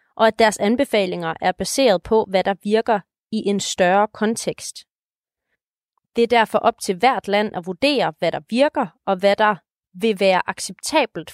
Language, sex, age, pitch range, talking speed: Danish, female, 30-49, 185-230 Hz, 170 wpm